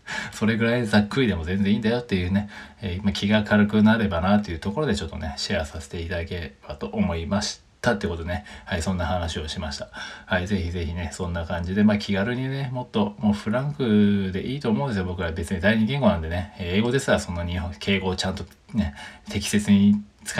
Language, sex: Japanese, male